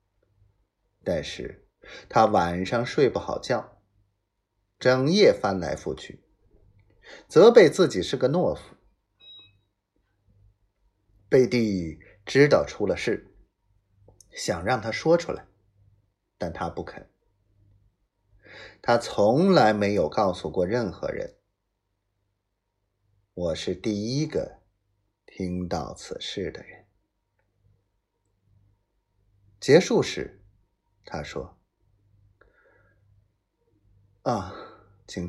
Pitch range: 95-105 Hz